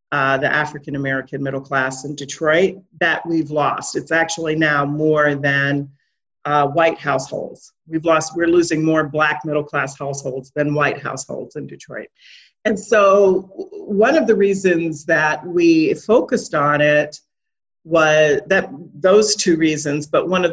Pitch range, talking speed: 145-195 Hz, 145 wpm